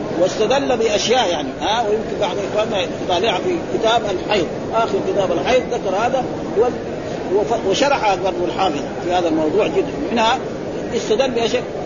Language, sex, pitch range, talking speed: Arabic, male, 200-240 Hz, 140 wpm